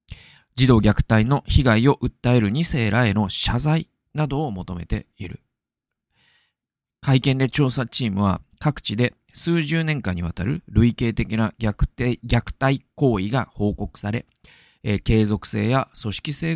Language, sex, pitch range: Japanese, male, 95-130 Hz